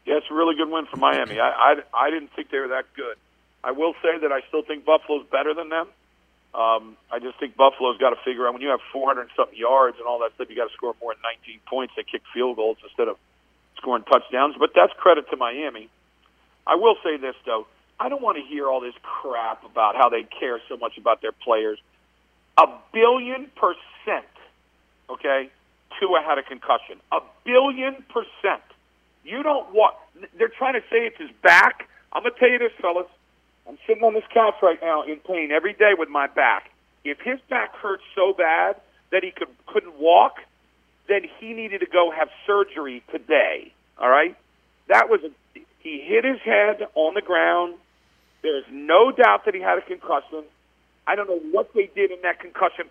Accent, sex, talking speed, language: American, male, 205 wpm, English